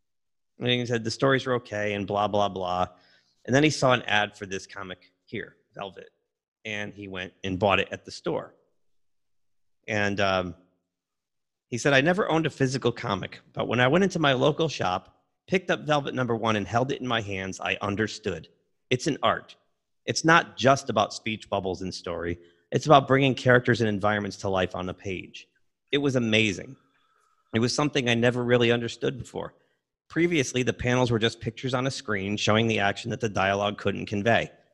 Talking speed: 195 wpm